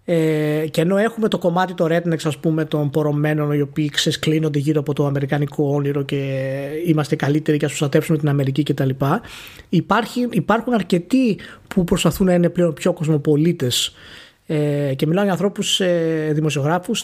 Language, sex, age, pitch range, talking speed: Greek, male, 20-39, 150-185 Hz, 160 wpm